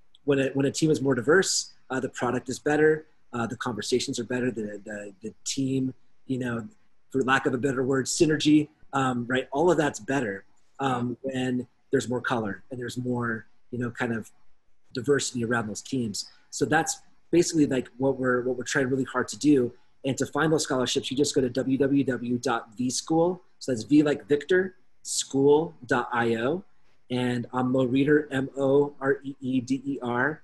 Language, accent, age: English, American, 30-49